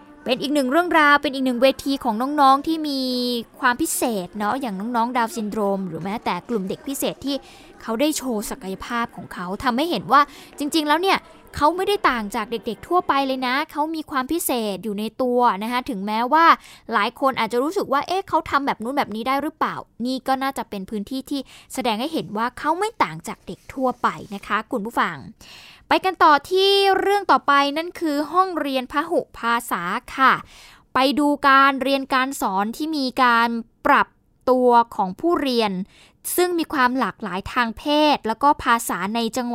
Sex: female